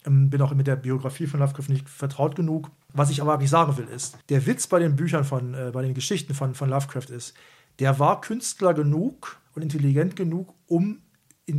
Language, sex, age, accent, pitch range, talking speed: German, male, 40-59, German, 140-165 Hz, 205 wpm